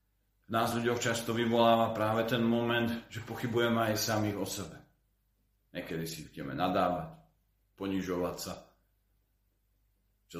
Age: 40-59